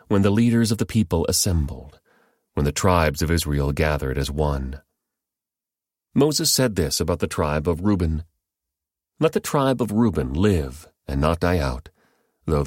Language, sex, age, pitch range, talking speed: English, male, 40-59, 80-100 Hz, 160 wpm